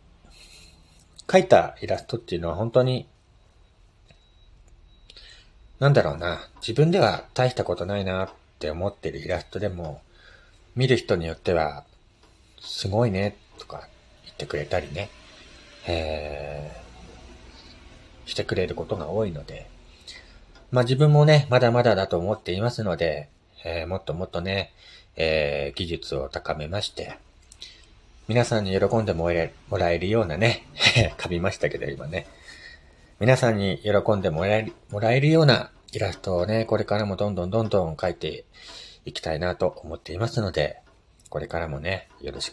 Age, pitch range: 40-59, 85-120 Hz